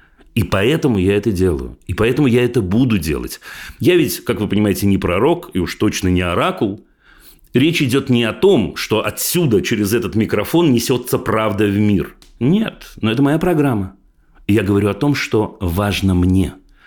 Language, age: Russian, 40-59